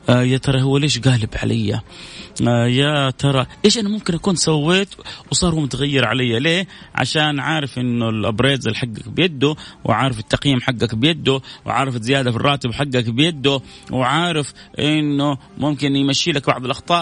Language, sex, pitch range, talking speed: Arabic, male, 110-150 Hz, 145 wpm